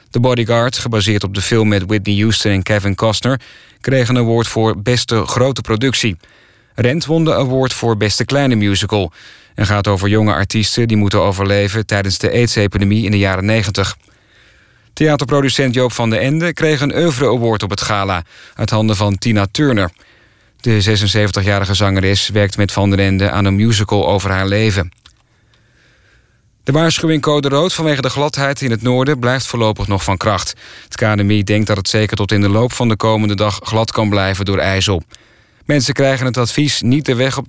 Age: 40-59